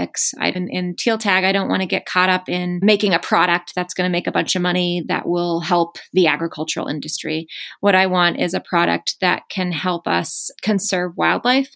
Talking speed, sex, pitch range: 205 wpm, female, 175-200 Hz